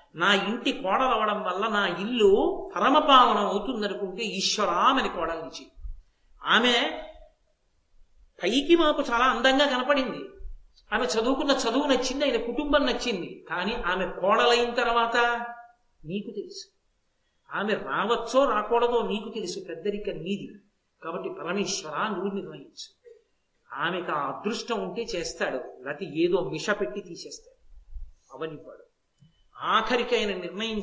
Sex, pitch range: male, 205-285 Hz